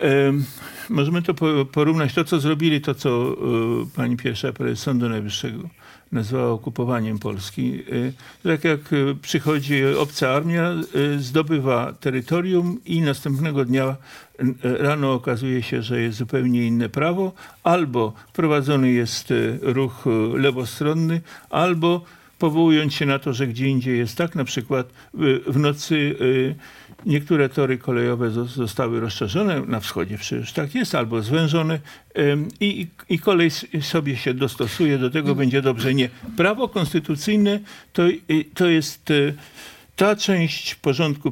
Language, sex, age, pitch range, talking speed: English, male, 50-69, 130-165 Hz, 120 wpm